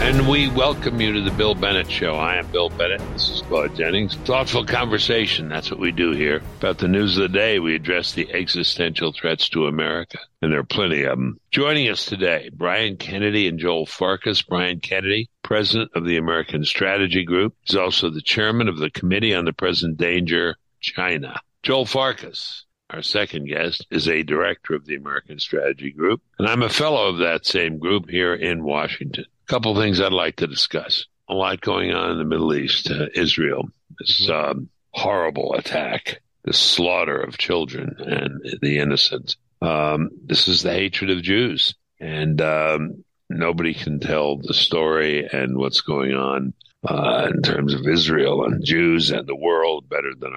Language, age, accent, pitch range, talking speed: English, 60-79, American, 75-105 Hz, 180 wpm